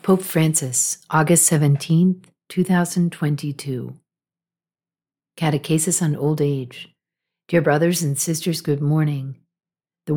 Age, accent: 50-69, American